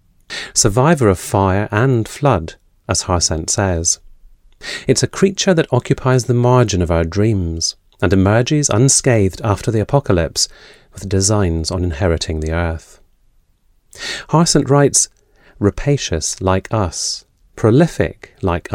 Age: 40-59